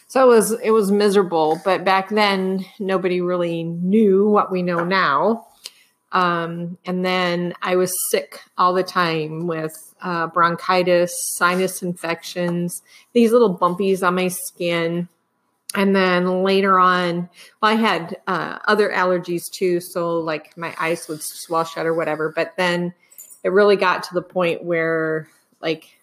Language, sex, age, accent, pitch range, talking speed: English, female, 30-49, American, 170-195 Hz, 150 wpm